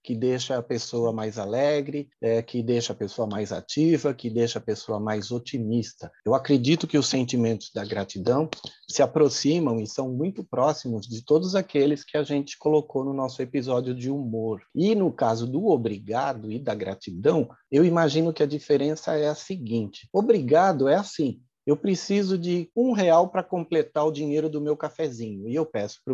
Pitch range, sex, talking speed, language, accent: 120-155 Hz, male, 180 wpm, Portuguese, Brazilian